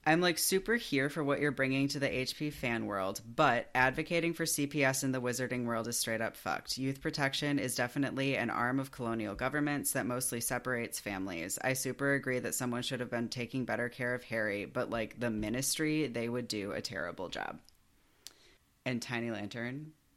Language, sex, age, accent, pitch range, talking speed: English, female, 30-49, American, 110-135 Hz, 190 wpm